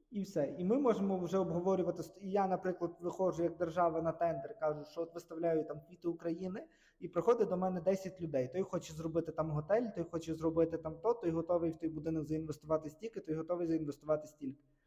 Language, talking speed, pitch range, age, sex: Ukrainian, 195 wpm, 155-180 Hz, 20-39, male